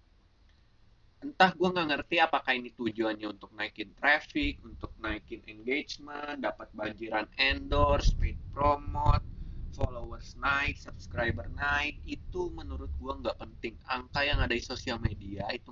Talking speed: 130 wpm